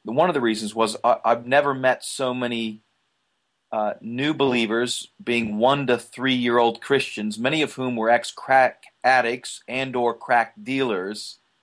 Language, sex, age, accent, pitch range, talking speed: English, male, 40-59, American, 110-135 Hz, 145 wpm